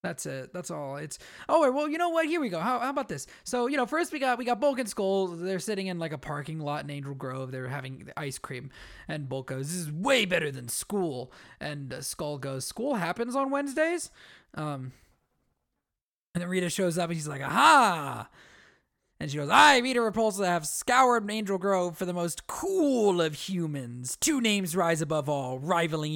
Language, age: English, 20-39